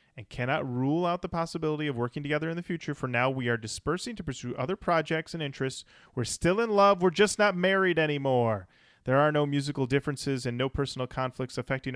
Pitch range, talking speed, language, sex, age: 125-160 Hz, 210 wpm, English, male, 30-49